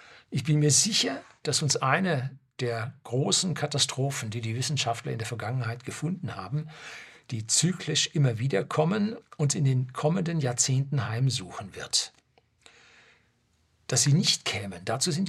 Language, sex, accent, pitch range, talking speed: German, male, German, 115-145 Hz, 140 wpm